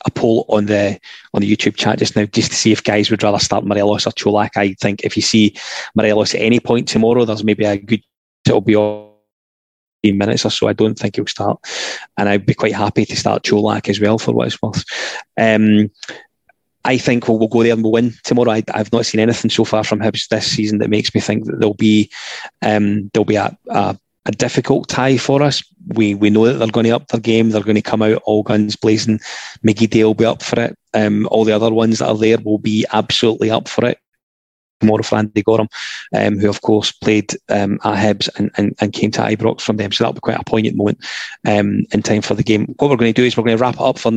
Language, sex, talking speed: English, male, 245 wpm